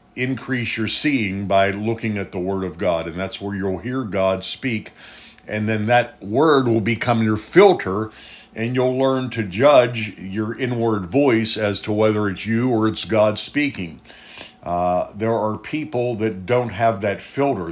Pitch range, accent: 95-120 Hz, American